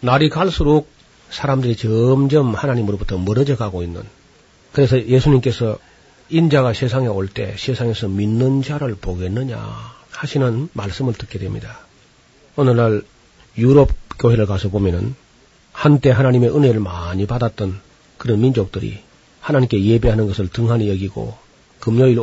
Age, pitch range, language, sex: 40-59, 105-135 Hz, Korean, male